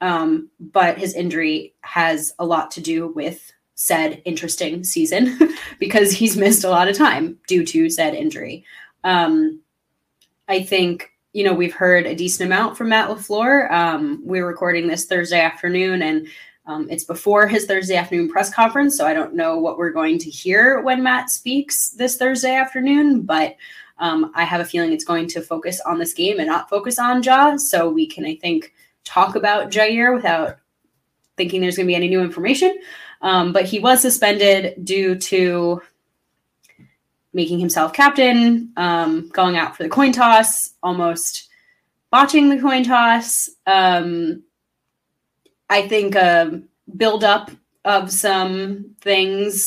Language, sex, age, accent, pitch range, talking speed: English, female, 20-39, American, 170-250 Hz, 160 wpm